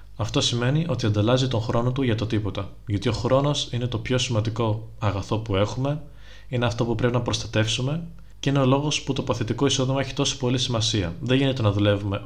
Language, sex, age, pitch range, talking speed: Greek, male, 20-39, 105-130 Hz, 205 wpm